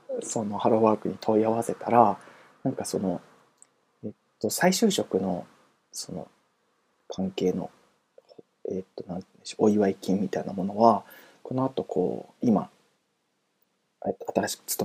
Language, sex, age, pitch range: Japanese, male, 20-39, 110-160 Hz